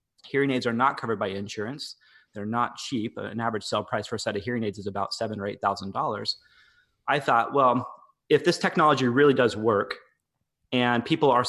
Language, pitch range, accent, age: English, 110-140 Hz, American, 30-49